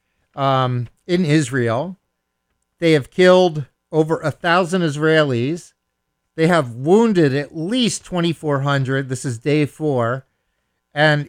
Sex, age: male, 50-69